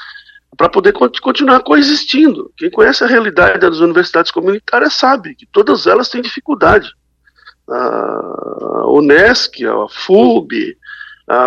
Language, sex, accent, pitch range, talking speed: Portuguese, male, Brazilian, 240-405 Hz, 115 wpm